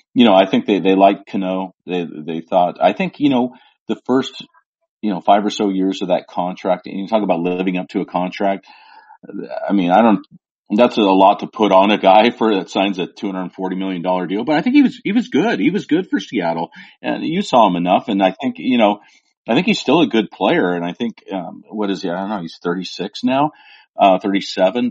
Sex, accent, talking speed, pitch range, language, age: male, American, 240 wpm, 85-100 Hz, English, 40-59